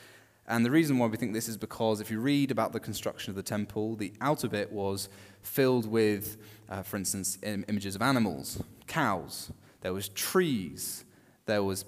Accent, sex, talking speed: British, male, 180 wpm